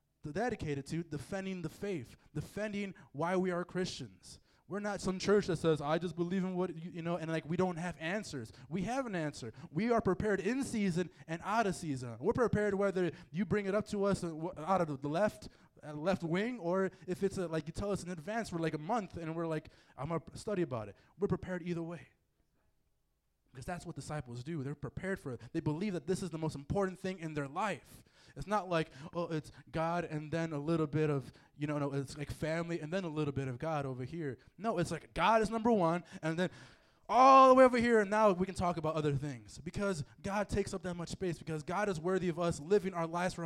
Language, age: English, 20-39